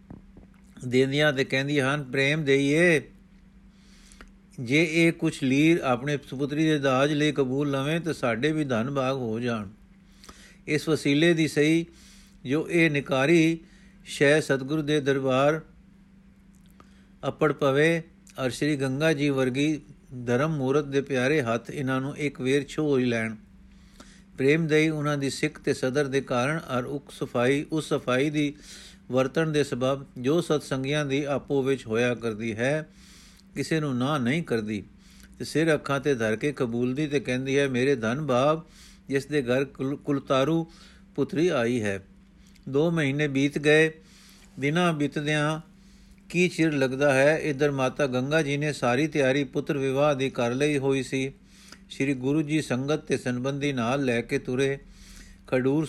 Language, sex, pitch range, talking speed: Punjabi, male, 135-160 Hz, 150 wpm